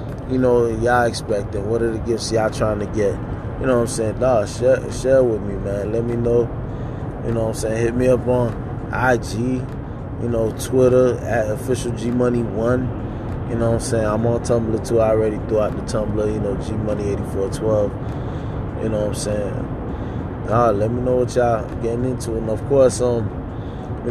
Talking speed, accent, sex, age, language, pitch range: 205 wpm, American, male, 20-39, English, 110-125 Hz